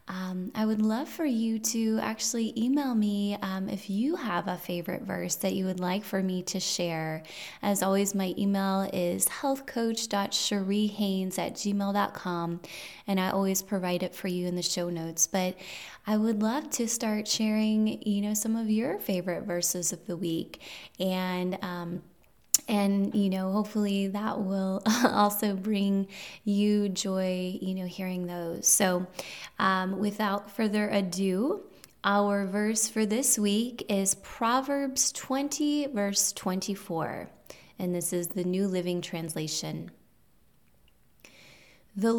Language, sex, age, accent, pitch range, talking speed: English, female, 20-39, American, 185-220 Hz, 140 wpm